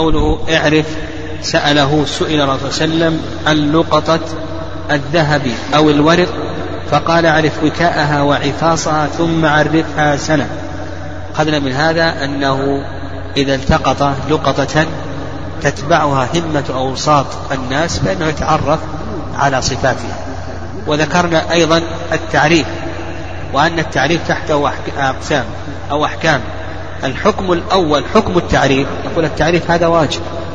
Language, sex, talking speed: Arabic, male, 95 wpm